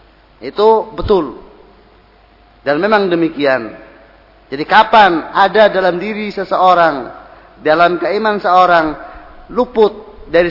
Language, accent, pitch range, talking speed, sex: English, Indonesian, 180-215 Hz, 90 wpm, male